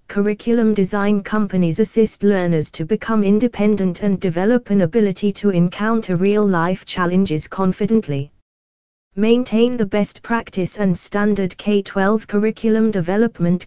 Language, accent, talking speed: English, British, 115 wpm